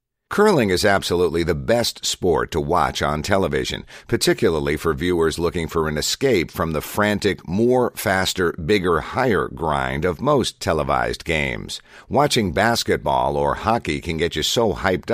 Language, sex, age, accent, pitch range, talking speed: English, male, 50-69, American, 75-105 Hz, 150 wpm